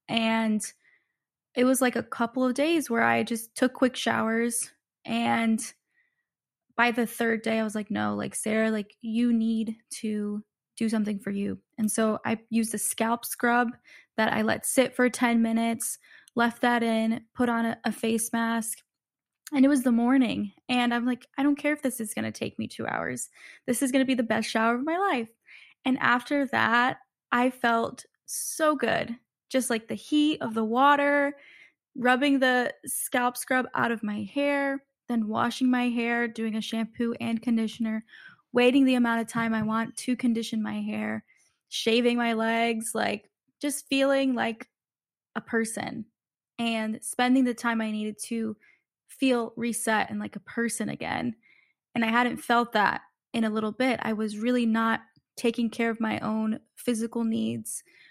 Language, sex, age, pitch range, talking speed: English, female, 10-29, 225-250 Hz, 180 wpm